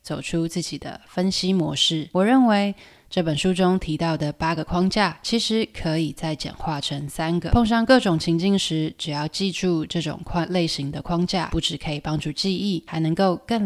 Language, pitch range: Chinese, 155-190 Hz